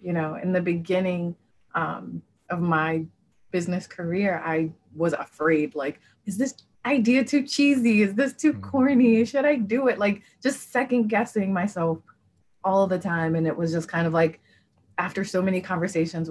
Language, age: English, 20-39